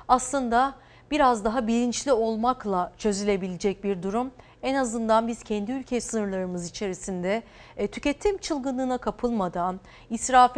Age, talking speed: 40-59, 110 wpm